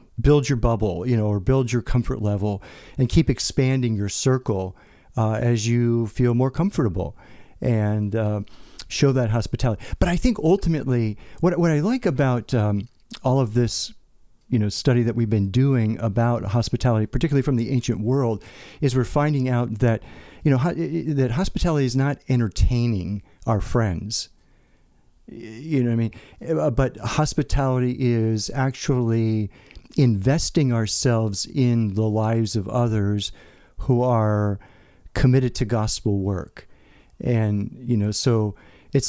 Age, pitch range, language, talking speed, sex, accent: 50-69, 105-130 Hz, English, 145 wpm, male, American